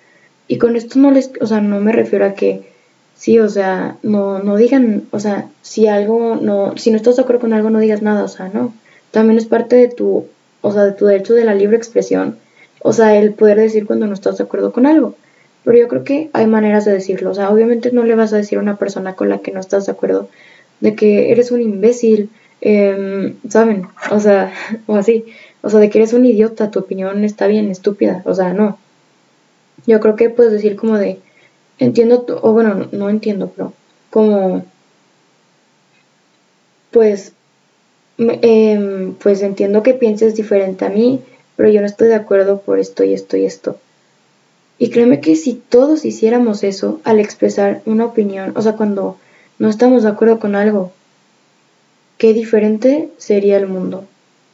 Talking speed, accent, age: 195 wpm, Mexican, 10-29